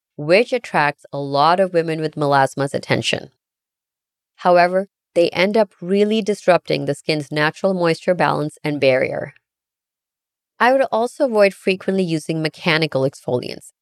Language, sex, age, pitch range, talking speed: English, female, 30-49, 150-195 Hz, 130 wpm